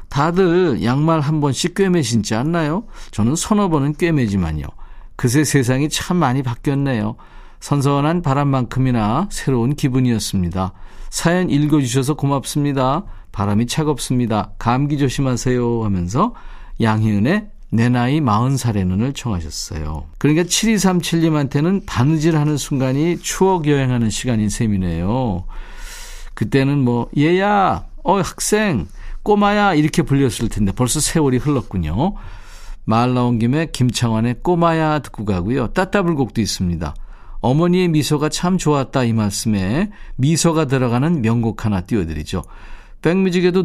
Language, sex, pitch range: Korean, male, 110-160 Hz